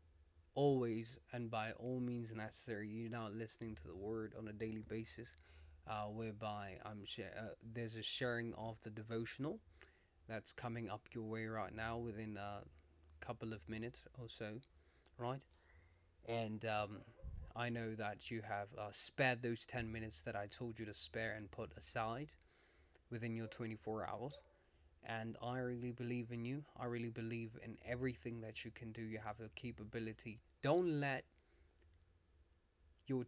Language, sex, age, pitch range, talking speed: English, male, 20-39, 85-120 Hz, 160 wpm